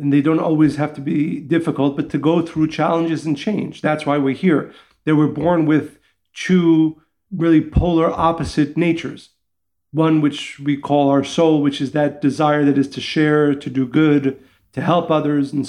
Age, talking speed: 40-59, 185 wpm